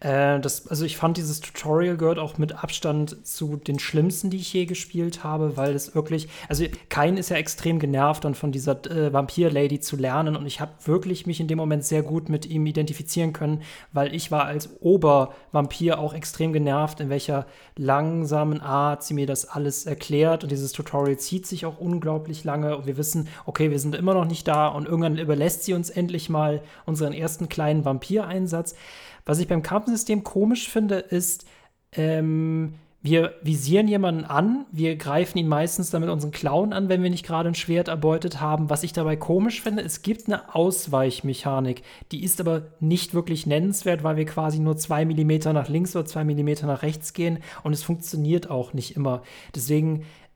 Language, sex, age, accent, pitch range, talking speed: German, male, 30-49, German, 150-170 Hz, 190 wpm